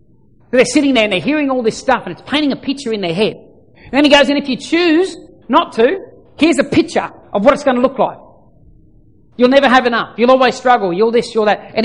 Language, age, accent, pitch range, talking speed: English, 40-59, Australian, 235-300 Hz, 250 wpm